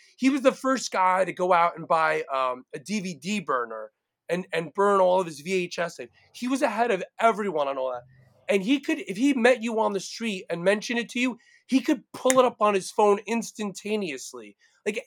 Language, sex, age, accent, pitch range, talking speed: English, male, 30-49, American, 180-240 Hz, 215 wpm